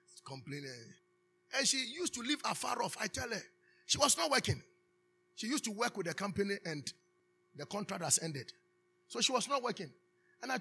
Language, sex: English, male